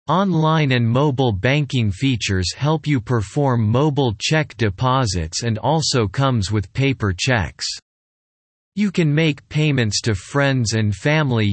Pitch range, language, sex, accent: 105-140 Hz, English, male, American